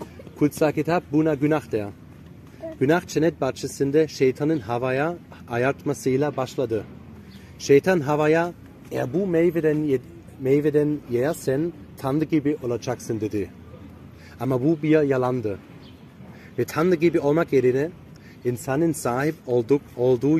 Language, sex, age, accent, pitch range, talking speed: Turkish, male, 30-49, German, 125-155 Hz, 105 wpm